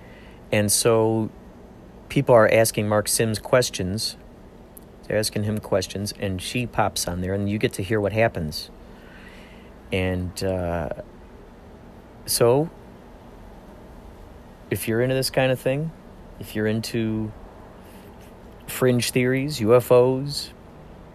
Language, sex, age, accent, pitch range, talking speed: English, male, 40-59, American, 100-120 Hz, 115 wpm